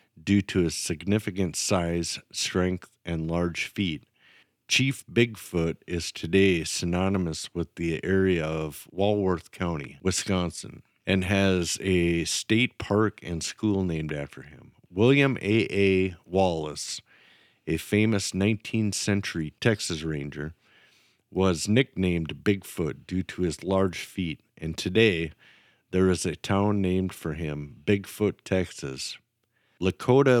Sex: male